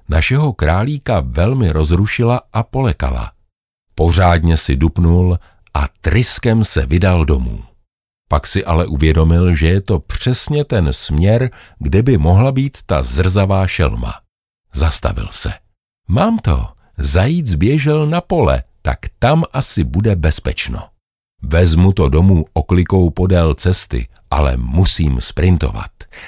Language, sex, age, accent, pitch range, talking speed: Czech, male, 50-69, native, 75-110 Hz, 120 wpm